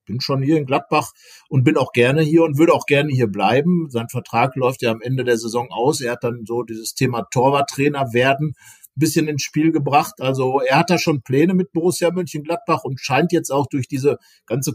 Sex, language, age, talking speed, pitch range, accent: male, German, 50-69, 220 wpm, 120-145 Hz, German